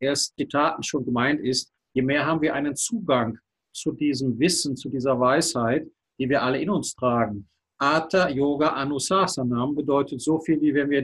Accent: German